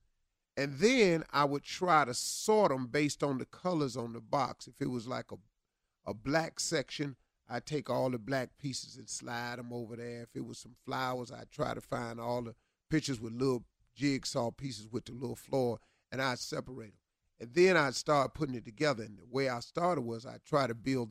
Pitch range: 115-150 Hz